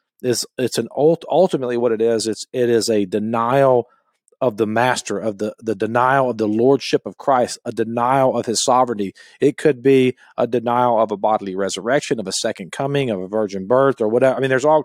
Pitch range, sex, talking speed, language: 110-135 Hz, male, 215 wpm, English